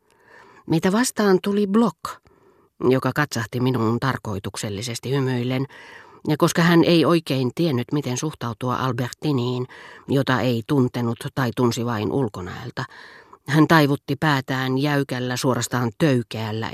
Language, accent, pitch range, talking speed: Finnish, native, 120-170 Hz, 110 wpm